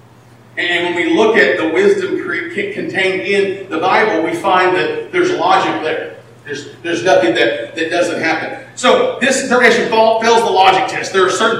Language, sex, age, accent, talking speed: English, male, 40-59, American, 175 wpm